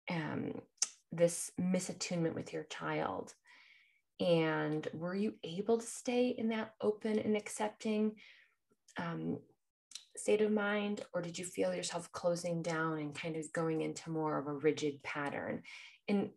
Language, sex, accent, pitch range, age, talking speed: English, female, American, 155-200 Hz, 20-39, 145 wpm